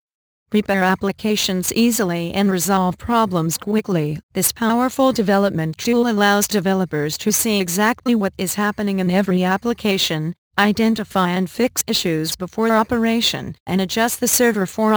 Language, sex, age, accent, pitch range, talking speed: English, female, 40-59, American, 180-220 Hz, 130 wpm